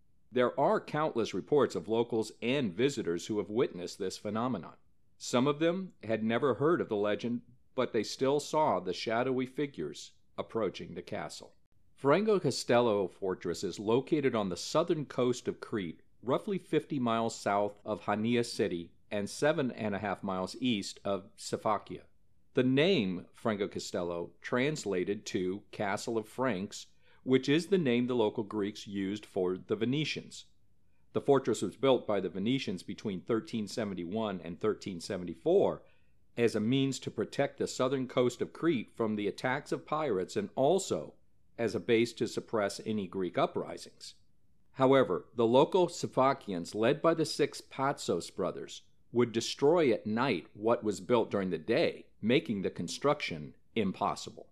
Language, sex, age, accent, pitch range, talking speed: English, male, 50-69, American, 100-135 Hz, 150 wpm